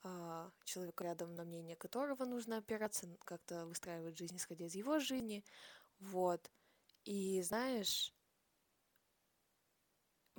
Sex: female